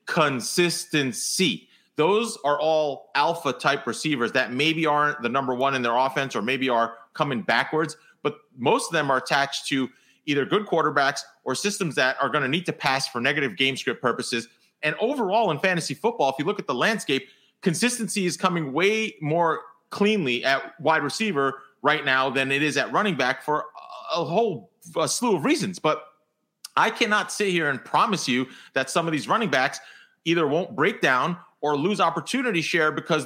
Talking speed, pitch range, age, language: 185 wpm, 140-185 Hz, 30-49, English